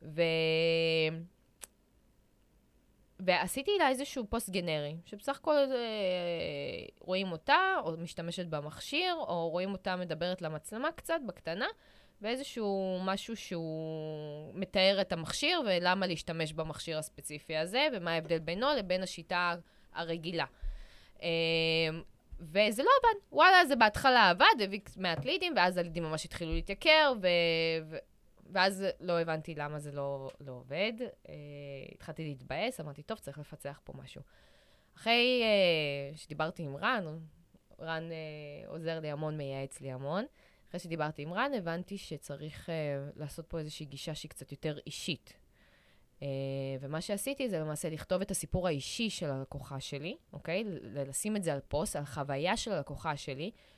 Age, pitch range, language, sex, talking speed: 20-39, 150-195 Hz, Hebrew, female, 135 wpm